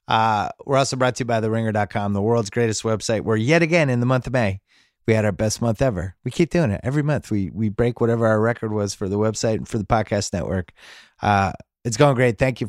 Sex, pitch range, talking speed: male, 95-125 Hz, 250 wpm